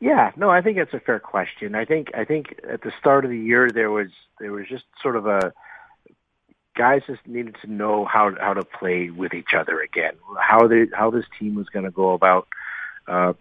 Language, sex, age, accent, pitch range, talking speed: English, male, 40-59, American, 90-105 Hz, 225 wpm